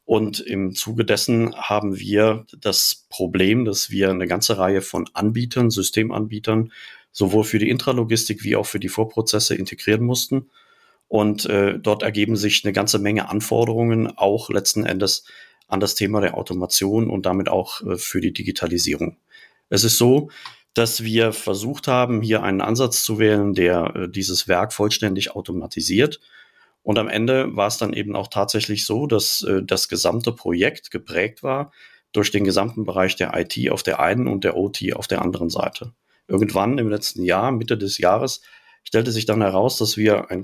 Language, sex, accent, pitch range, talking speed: German, male, German, 100-115 Hz, 170 wpm